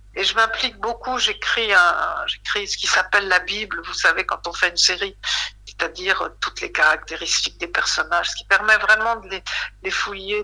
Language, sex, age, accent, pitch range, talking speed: French, female, 60-79, French, 185-240 Hz, 180 wpm